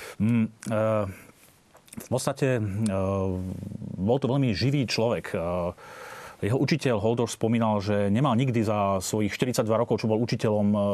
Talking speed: 135 wpm